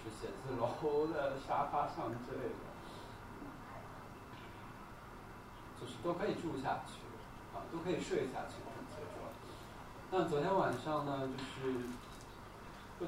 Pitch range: 115-130 Hz